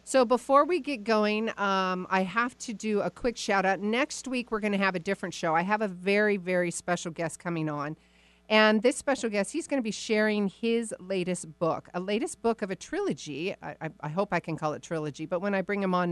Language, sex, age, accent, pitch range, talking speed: English, female, 50-69, American, 160-210 Hz, 240 wpm